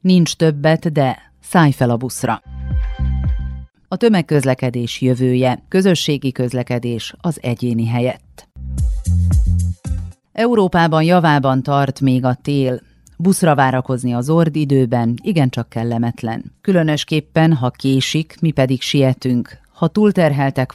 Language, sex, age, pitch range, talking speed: Hungarian, female, 40-59, 125-155 Hz, 105 wpm